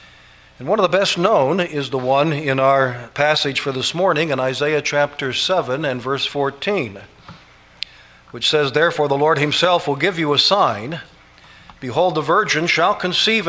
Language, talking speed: English, 170 wpm